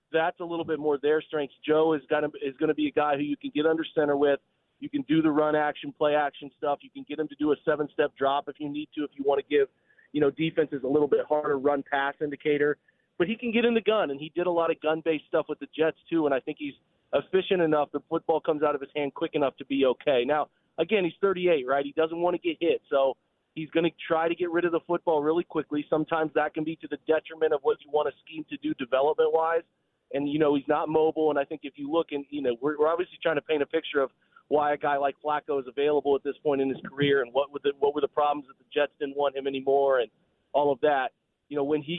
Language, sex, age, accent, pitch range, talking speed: English, male, 30-49, American, 145-165 Hz, 280 wpm